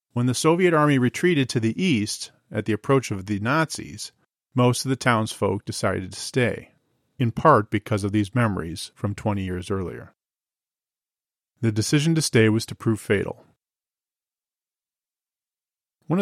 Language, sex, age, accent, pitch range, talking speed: English, male, 40-59, American, 105-125 Hz, 150 wpm